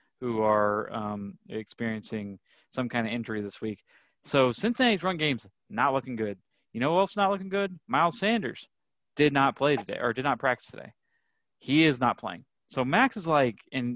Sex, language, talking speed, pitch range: male, English, 195 wpm, 120-160 Hz